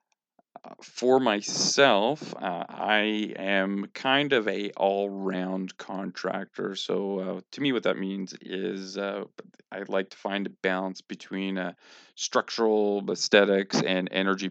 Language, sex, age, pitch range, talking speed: English, male, 40-59, 95-100 Hz, 130 wpm